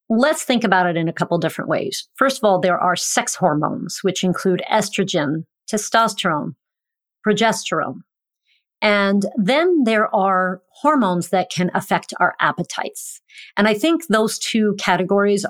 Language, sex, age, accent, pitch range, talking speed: English, female, 40-59, American, 180-220 Hz, 145 wpm